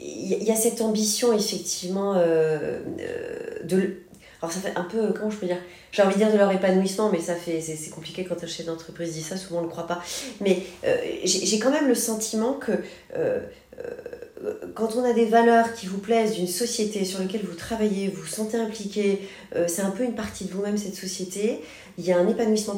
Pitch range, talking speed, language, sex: 175-225 Hz, 215 wpm, French, female